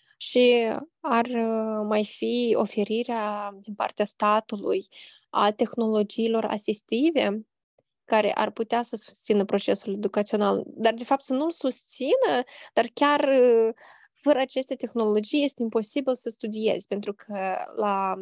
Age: 20-39